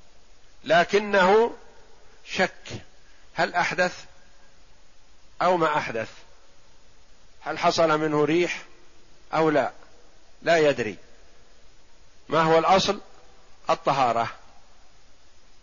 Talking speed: 75 wpm